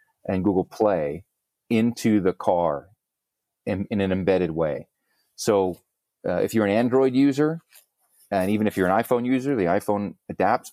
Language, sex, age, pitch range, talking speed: English, male, 40-59, 90-110 Hz, 155 wpm